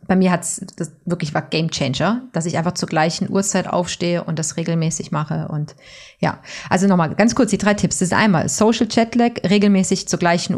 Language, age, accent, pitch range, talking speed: German, 30-49, German, 170-200 Hz, 200 wpm